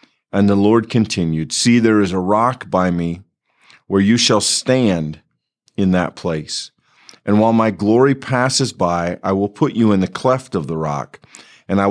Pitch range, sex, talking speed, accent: 90-115 Hz, male, 180 wpm, American